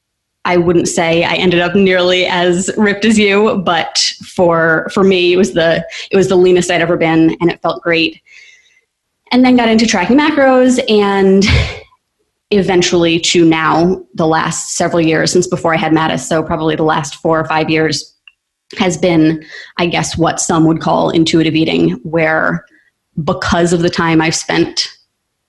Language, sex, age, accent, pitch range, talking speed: English, female, 20-39, American, 160-180 Hz, 170 wpm